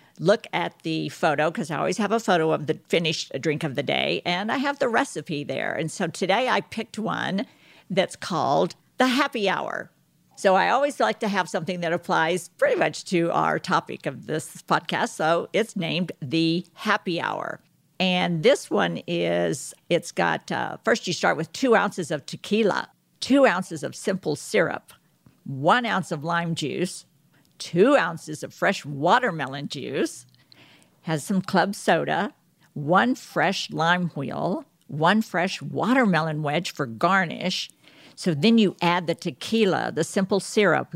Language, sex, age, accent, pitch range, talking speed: English, female, 50-69, American, 155-200 Hz, 165 wpm